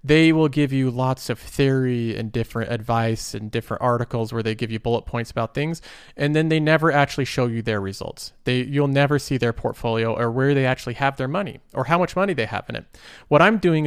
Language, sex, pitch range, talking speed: English, male, 120-150 Hz, 235 wpm